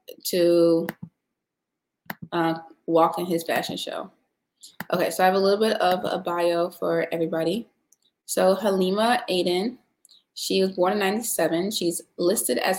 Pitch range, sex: 170-200 Hz, female